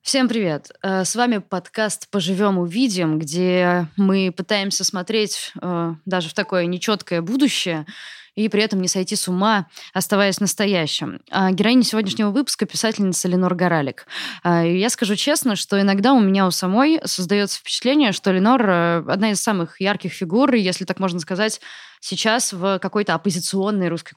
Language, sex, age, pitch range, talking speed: Russian, female, 20-39, 170-205 Hz, 145 wpm